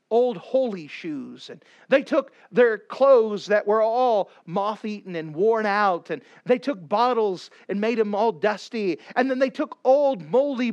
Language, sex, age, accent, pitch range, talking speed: English, male, 40-59, American, 200-265 Hz, 175 wpm